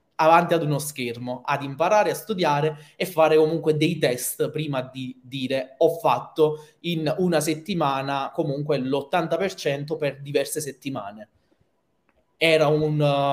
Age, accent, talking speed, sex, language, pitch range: 20-39, native, 125 wpm, male, Italian, 140-175 Hz